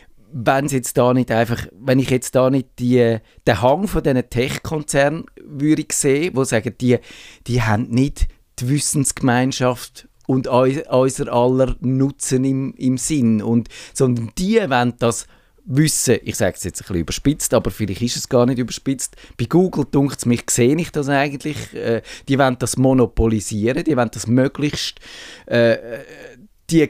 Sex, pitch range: male, 115-140 Hz